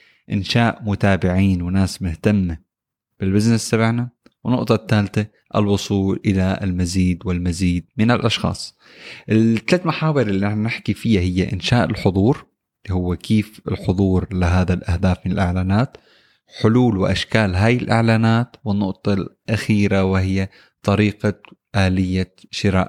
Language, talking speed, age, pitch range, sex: Arabic, 105 wpm, 20-39, 95-115 Hz, male